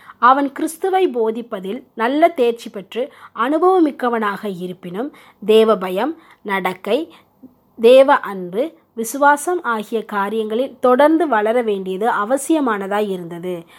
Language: Tamil